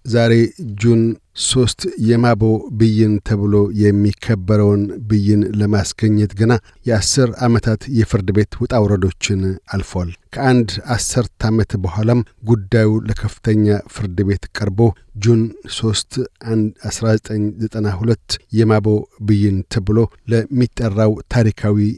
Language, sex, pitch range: Amharic, male, 100-115 Hz